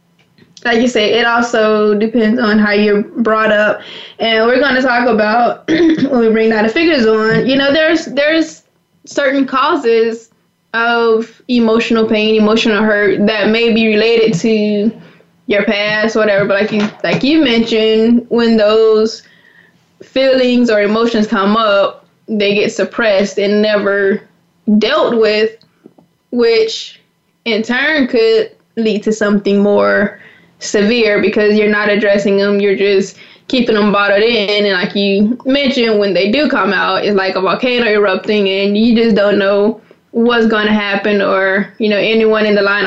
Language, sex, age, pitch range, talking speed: English, female, 10-29, 205-240 Hz, 160 wpm